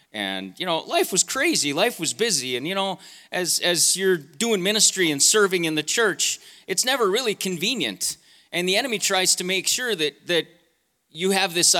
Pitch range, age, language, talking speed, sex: 160-205 Hz, 30-49, English, 195 wpm, male